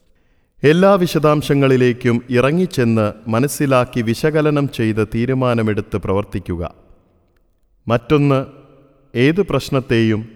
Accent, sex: native, male